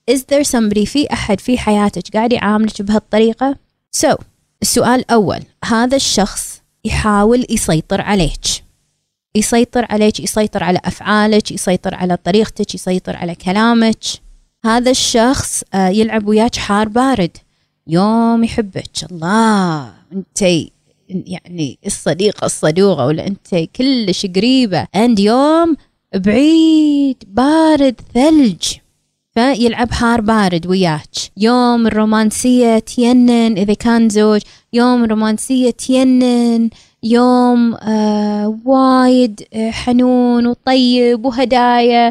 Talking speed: 100 wpm